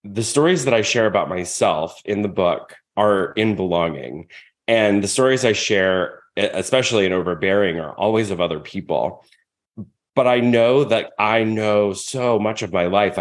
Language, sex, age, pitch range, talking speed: English, male, 30-49, 95-120 Hz, 170 wpm